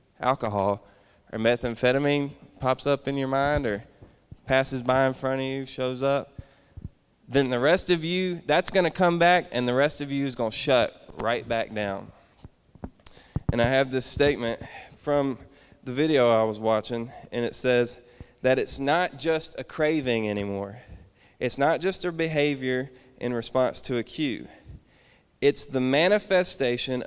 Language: English